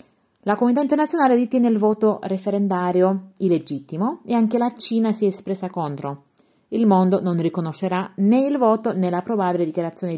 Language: Italian